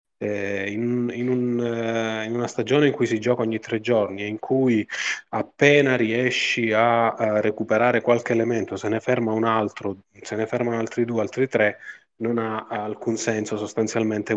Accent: native